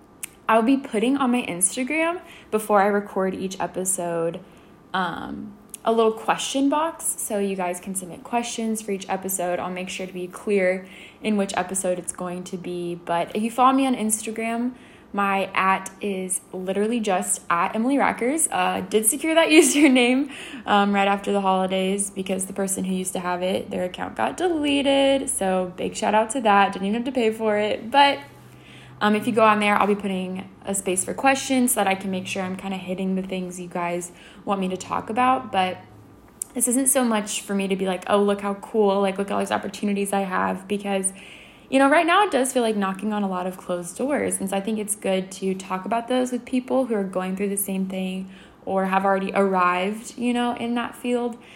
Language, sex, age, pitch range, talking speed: English, female, 10-29, 190-240 Hz, 215 wpm